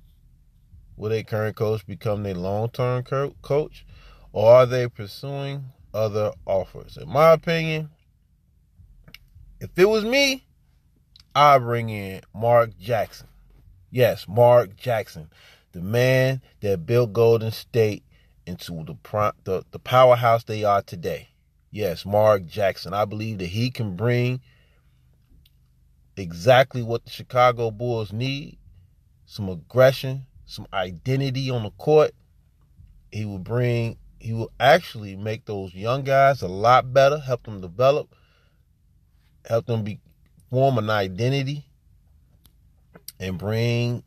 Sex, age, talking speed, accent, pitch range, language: male, 30-49, 120 wpm, American, 90-120 Hz, English